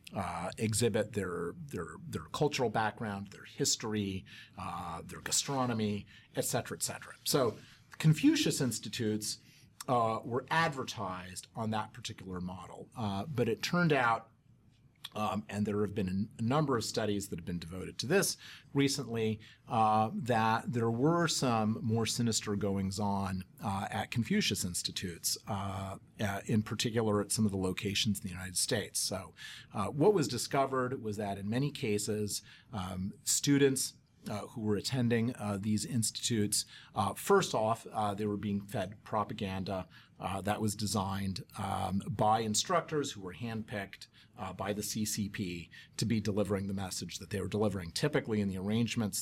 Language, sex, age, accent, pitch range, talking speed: English, male, 40-59, American, 100-120 Hz, 155 wpm